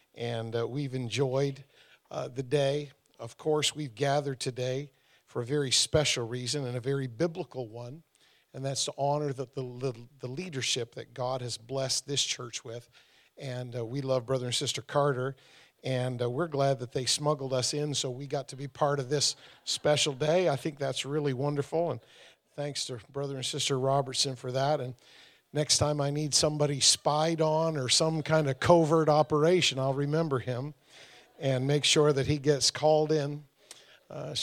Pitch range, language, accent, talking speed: 125-150 Hz, English, American, 185 wpm